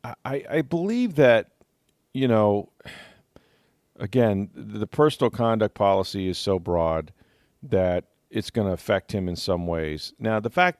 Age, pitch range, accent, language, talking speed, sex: 40-59, 90-110 Hz, American, English, 145 wpm, male